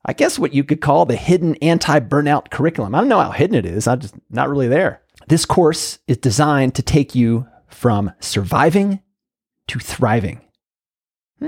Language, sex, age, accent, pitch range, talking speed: English, male, 30-49, American, 120-160 Hz, 180 wpm